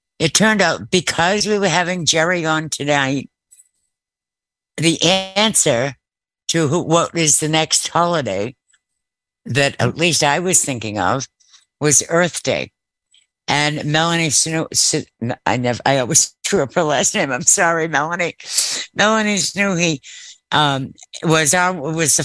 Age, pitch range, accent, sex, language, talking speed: 60-79, 135-170 Hz, American, female, English, 140 wpm